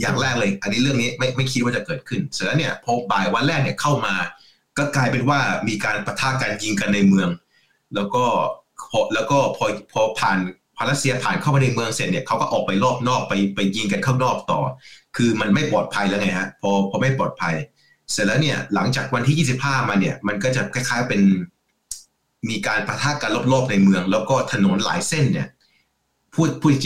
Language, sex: English, male